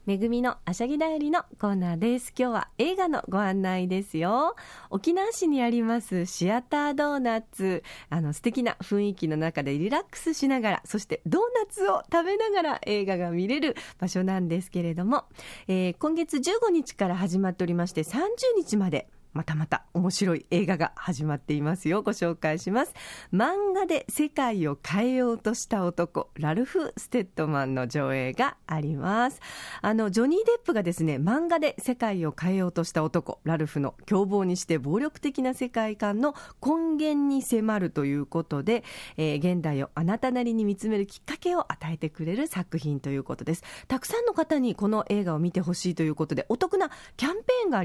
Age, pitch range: 40-59, 170-275 Hz